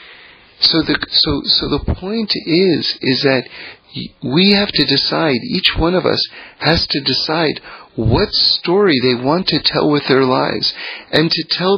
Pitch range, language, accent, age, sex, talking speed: 135-180 Hz, English, American, 40-59, male, 165 wpm